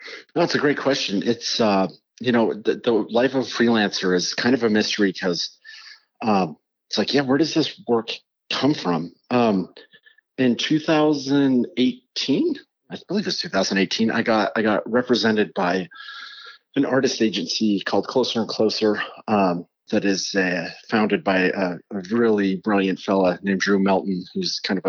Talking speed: 165 wpm